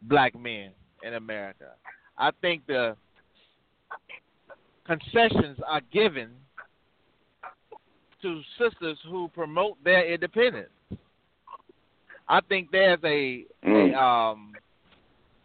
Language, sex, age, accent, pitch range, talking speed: English, male, 40-59, American, 150-210 Hz, 80 wpm